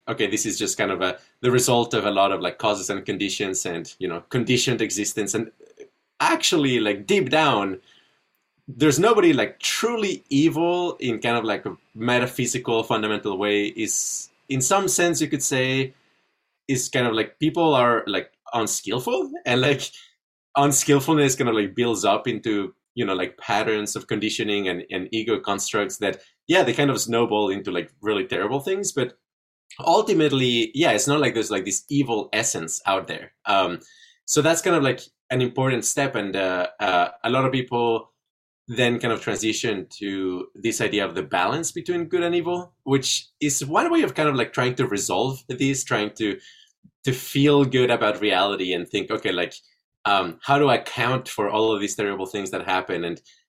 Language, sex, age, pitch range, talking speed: English, male, 30-49, 110-150 Hz, 185 wpm